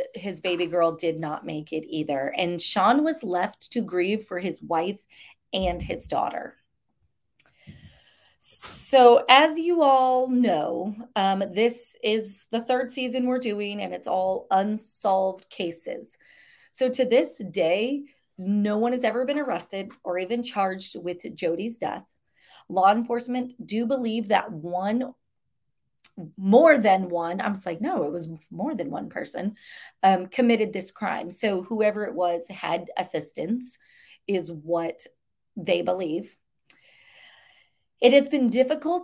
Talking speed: 140 wpm